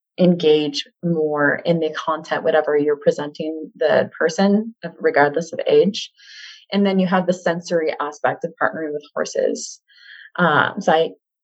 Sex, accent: female, American